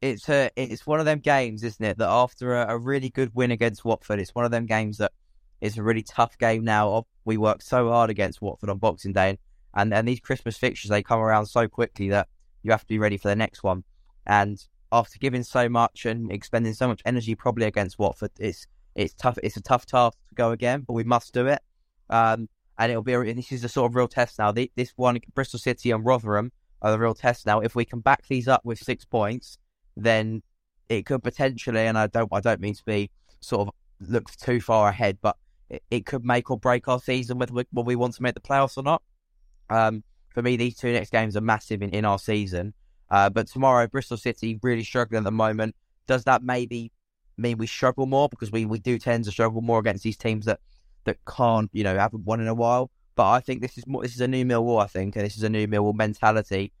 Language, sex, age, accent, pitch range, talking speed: English, male, 10-29, British, 105-125 Hz, 245 wpm